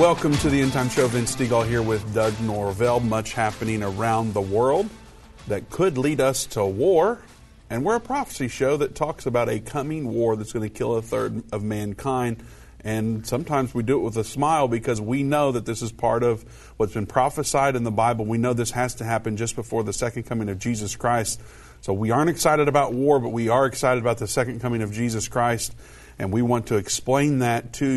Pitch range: 105-120 Hz